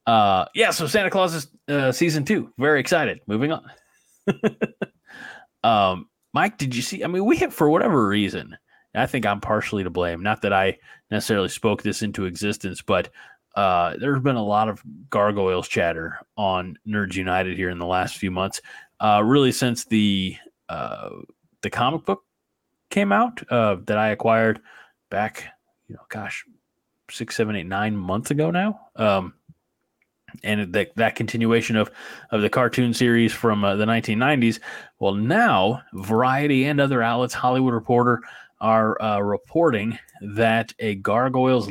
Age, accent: 30-49, American